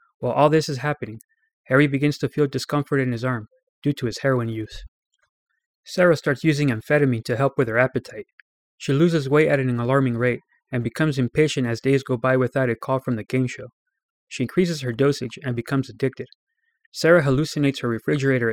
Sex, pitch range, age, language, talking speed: male, 125-150 Hz, 20-39, English, 190 wpm